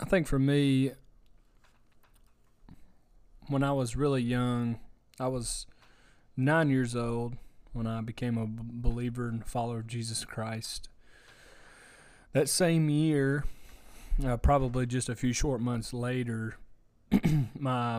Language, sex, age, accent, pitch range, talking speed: English, male, 20-39, American, 115-135 Hz, 120 wpm